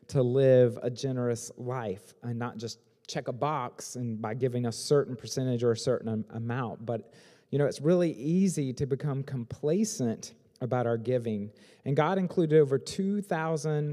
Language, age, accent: English, 30-49, American